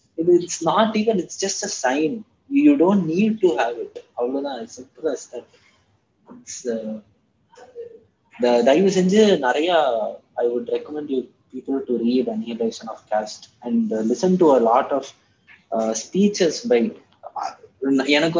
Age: 20-39